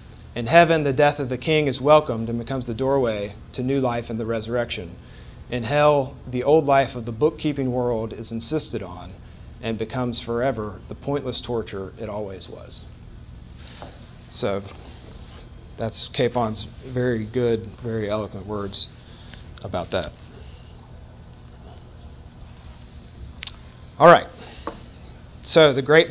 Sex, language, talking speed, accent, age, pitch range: male, English, 125 wpm, American, 40-59, 110-130 Hz